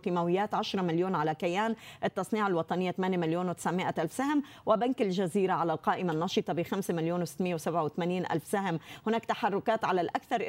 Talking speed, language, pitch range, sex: 160 wpm, Arabic, 170-210 Hz, female